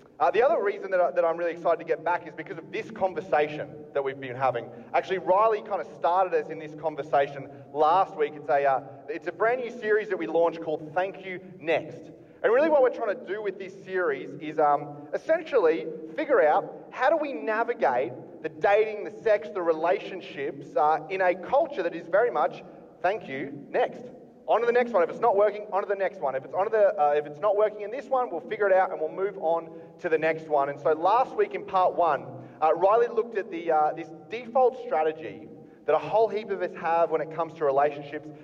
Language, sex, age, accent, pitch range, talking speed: English, male, 30-49, Australian, 150-200 Hz, 230 wpm